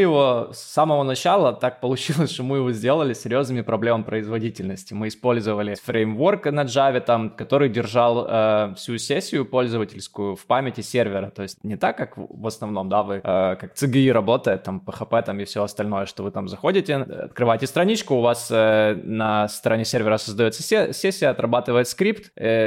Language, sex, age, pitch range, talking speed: Ukrainian, male, 20-39, 110-140 Hz, 175 wpm